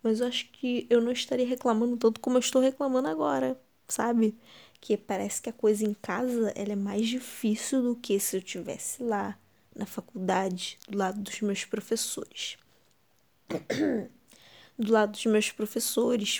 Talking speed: 160 wpm